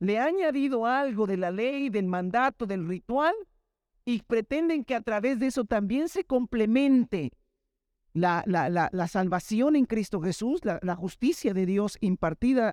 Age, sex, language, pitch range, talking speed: 50-69, male, Spanish, 180-260 Hz, 165 wpm